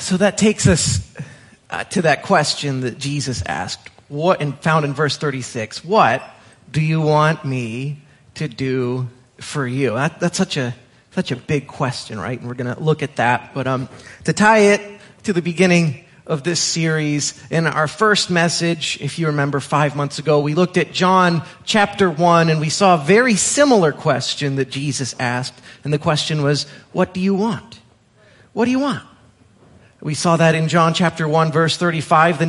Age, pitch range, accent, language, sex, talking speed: 30-49, 140-190 Hz, American, English, male, 180 wpm